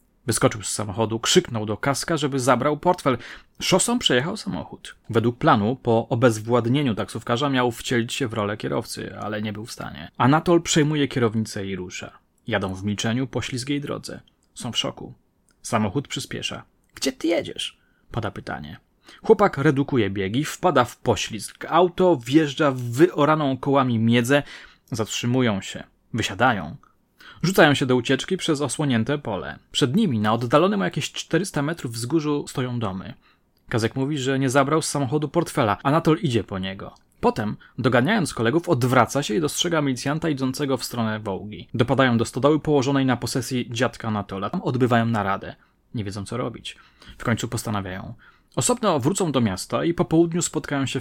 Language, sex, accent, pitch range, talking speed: Polish, male, native, 115-150 Hz, 160 wpm